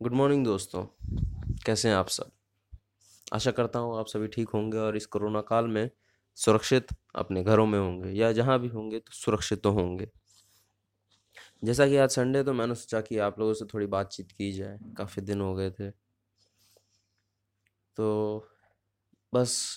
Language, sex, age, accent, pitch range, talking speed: Hindi, male, 20-39, native, 100-120 Hz, 165 wpm